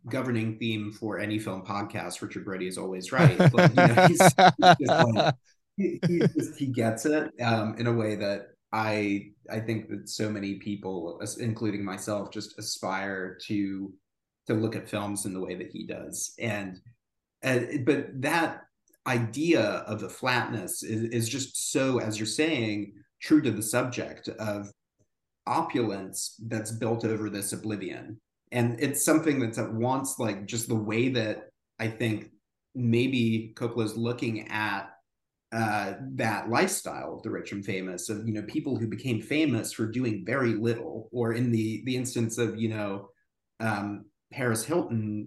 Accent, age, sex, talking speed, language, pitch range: American, 30-49, male, 150 wpm, English, 105-120 Hz